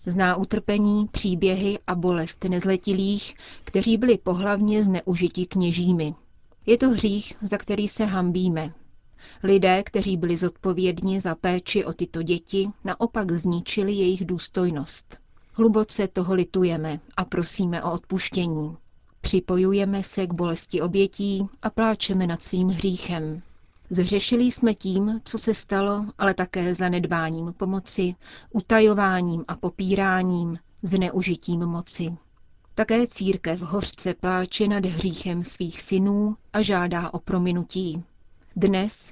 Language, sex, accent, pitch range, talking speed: Czech, female, native, 175-205 Hz, 115 wpm